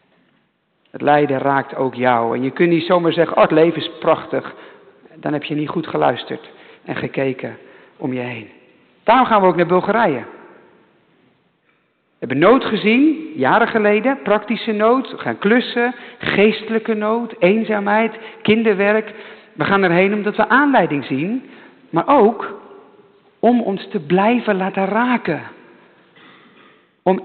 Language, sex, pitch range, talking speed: English, male, 175-230 Hz, 140 wpm